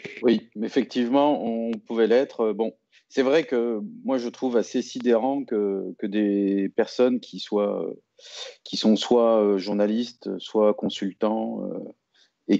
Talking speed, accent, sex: 135 wpm, French, male